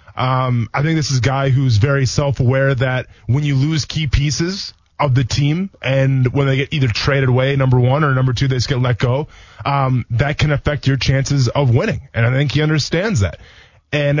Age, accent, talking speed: 20-39, American, 215 wpm